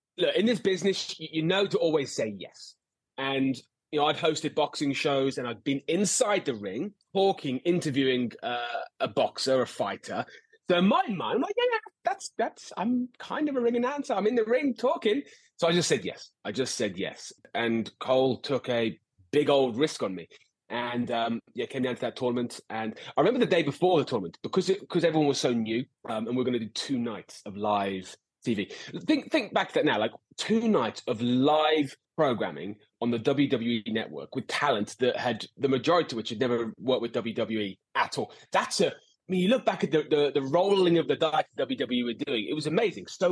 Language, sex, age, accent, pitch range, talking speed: English, male, 30-49, British, 115-175 Hz, 215 wpm